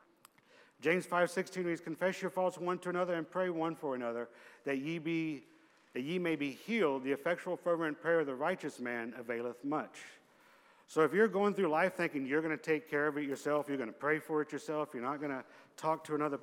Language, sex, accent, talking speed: English, male, American, 225 wpm